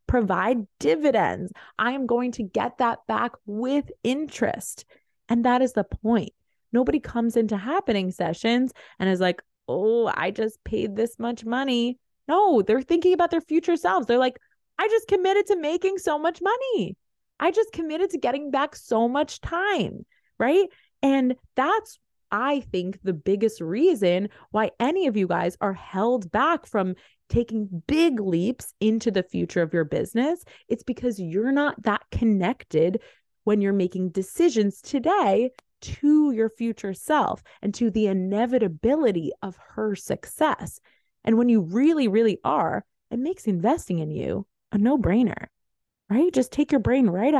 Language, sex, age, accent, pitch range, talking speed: English, female, 20-39, American, 210-300 Hz, 160 wpm